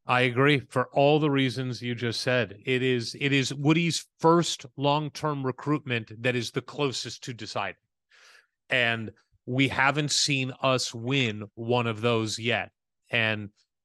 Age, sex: 30-49, male